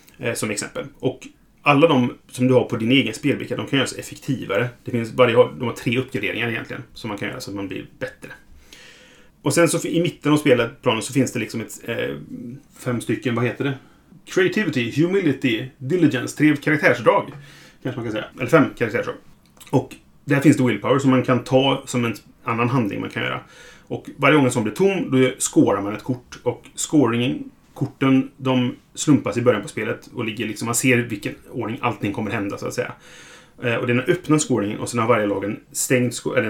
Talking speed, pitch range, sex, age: 210 wpm, 110-135 Hz, male, 30-49